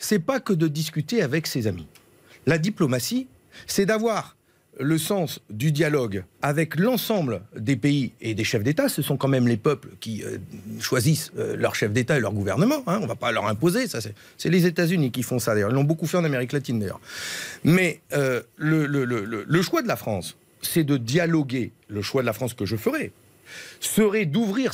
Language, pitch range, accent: French, 135-205 Hz, French